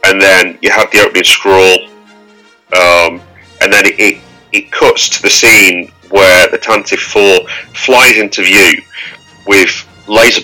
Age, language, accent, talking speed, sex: 30-49, English, British, 150 wpm, male